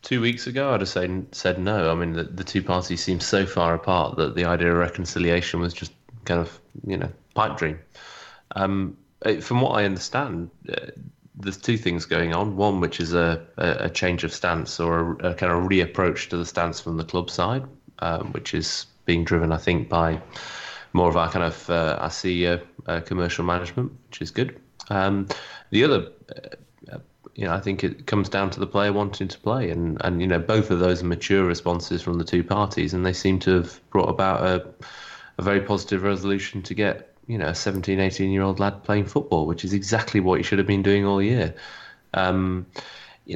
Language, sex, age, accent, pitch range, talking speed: English, male, 20-39, British, 85-100 Hz, 210 wpm